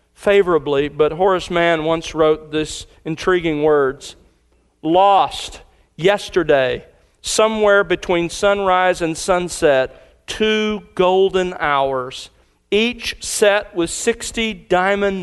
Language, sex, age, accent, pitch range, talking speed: English, male, 40-59, American, 150-200 Hz, 95 wpm